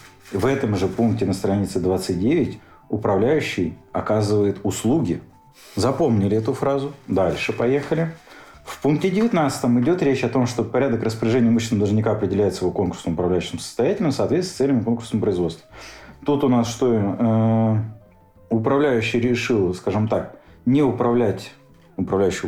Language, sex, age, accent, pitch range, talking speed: Russian, male, 40-59, native, 105-135 Hz, 135 wpm